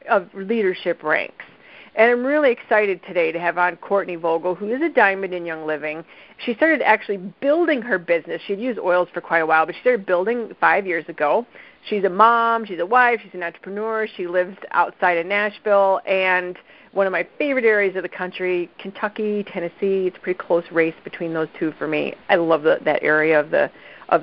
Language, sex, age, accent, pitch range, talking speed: English, female, 40-59, American, 175-235 Hz, 205 wpm